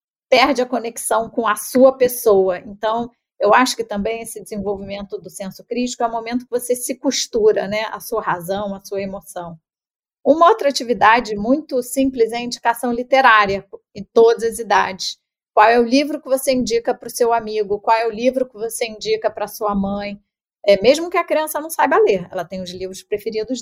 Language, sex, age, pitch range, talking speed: Portuguese, female, 30-49, 195-235 Hz, 200 wpm